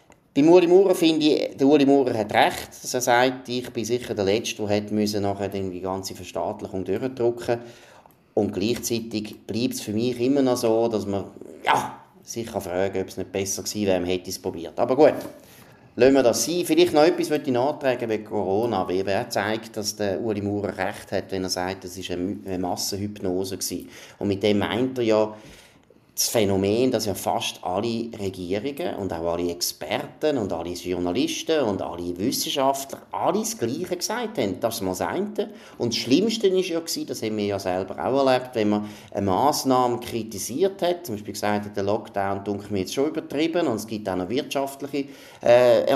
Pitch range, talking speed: 100-135 Hz, 190 wpm